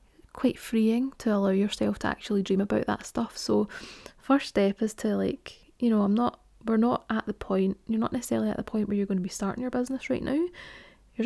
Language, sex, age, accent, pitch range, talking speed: English, female, 20-39, British, 195-230 Hz, 230 wpm